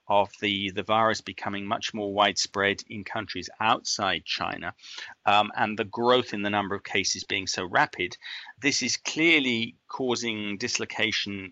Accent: British